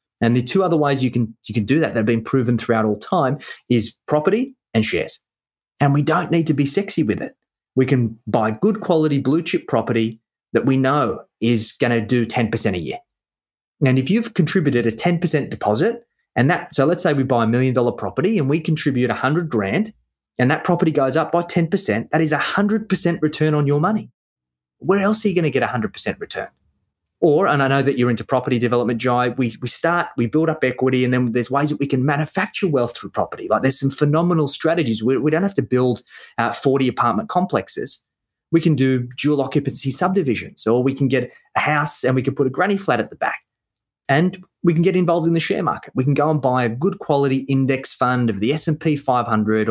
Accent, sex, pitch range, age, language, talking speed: Australian, male, 125-165 Hz, 30-49, English, 225 wpm